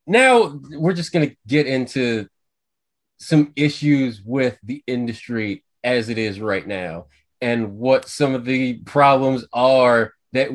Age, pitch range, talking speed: 20-39, 115-145 Hz, 140 wpm